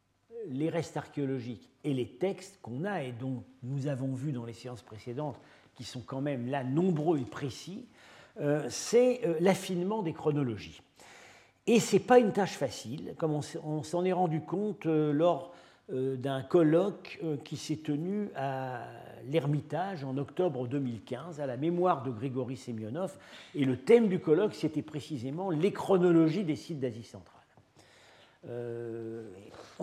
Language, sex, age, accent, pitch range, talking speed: French, male, 50-69, French, 130-175 Hz, 145 wpm